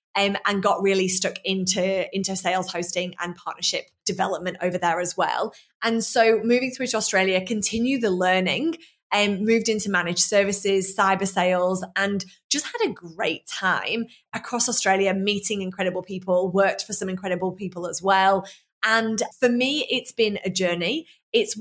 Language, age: English, 20-39